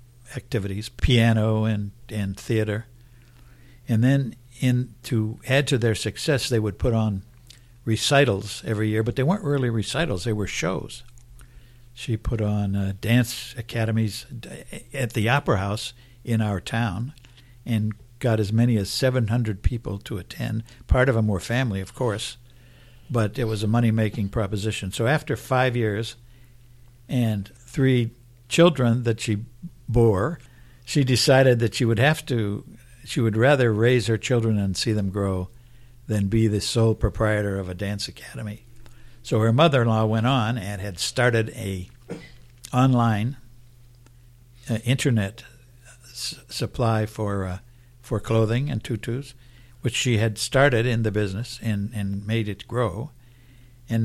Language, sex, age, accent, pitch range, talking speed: English, male, 60-79, American, 110-125 Hz, 145 wpm